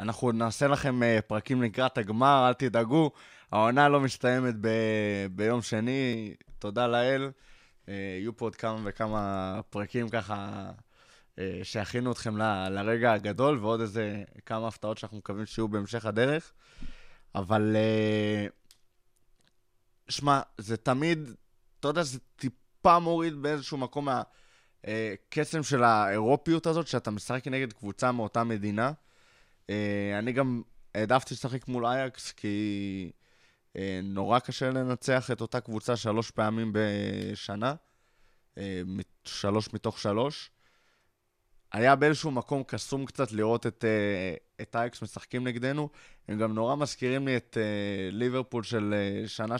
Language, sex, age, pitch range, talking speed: Hebrew, male, 20-39, 105-130 Hz, 120 wpm